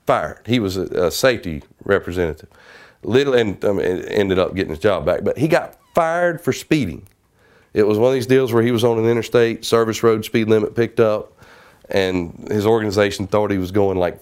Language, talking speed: English, 205 wpm